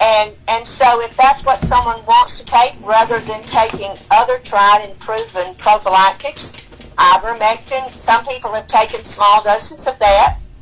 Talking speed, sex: 155 wpm, female